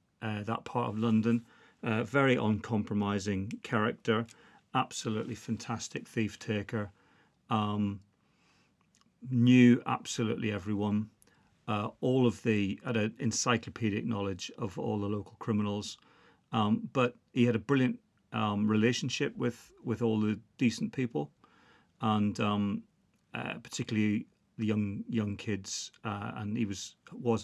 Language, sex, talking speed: English, male, 120 wpm